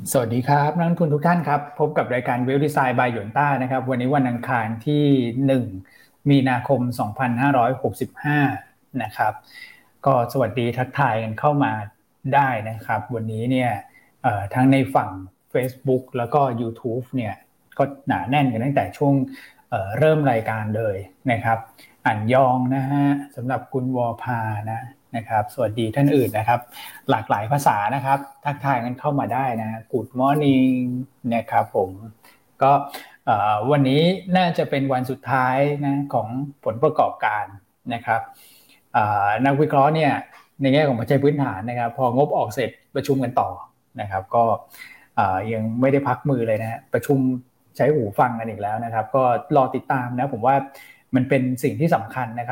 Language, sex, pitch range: Thai, male, 115-140 Hz